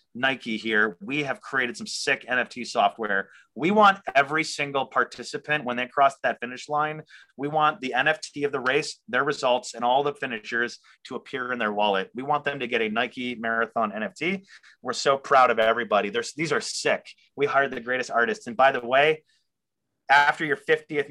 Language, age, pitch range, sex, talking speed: English, 30-49, 125-155 Hz, male, 195 wpm